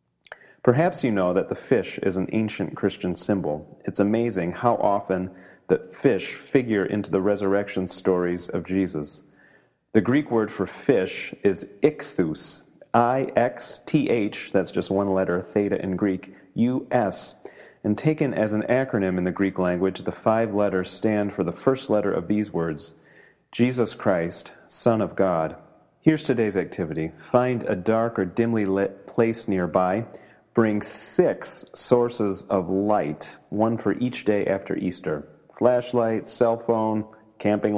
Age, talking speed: 30-49, 145 wpm